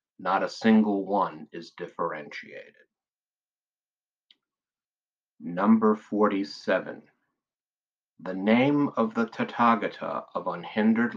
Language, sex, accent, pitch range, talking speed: English, male, American, 95-115 Hz, 80 wpm